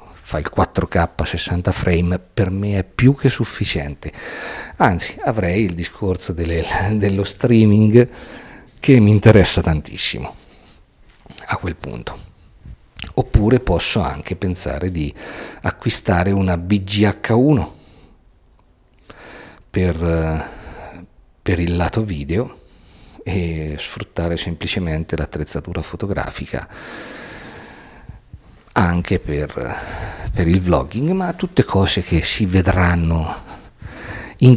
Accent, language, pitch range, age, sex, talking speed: native, Italian, 85-110 Hz, 50-69, male, 95 wpm